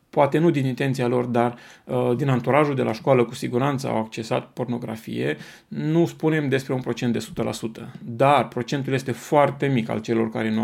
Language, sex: Romanian, male